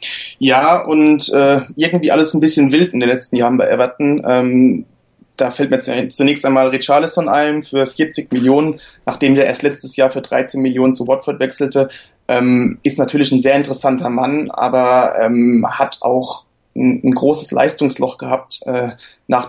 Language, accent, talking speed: German, German, 165 wpm